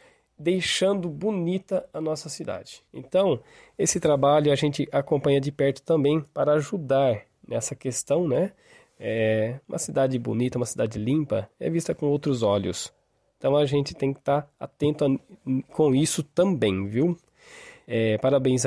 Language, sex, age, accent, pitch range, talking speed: Portuguese, male, 20-39, Brazilian, 125-160 Hz, 150 wpm